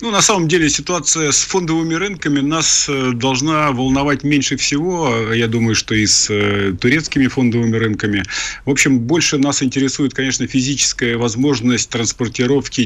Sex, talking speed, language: male, 140 wpm, Russian